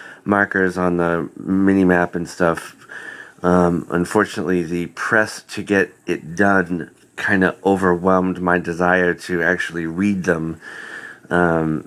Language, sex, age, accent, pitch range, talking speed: English, male, 30-49, American, 90-105 Hz, 120 wpm